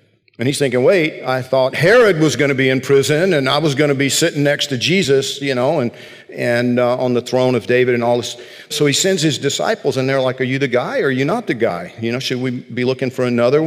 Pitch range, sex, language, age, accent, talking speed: 120-145 Hz, male, English, 50-69, American, 270 wpm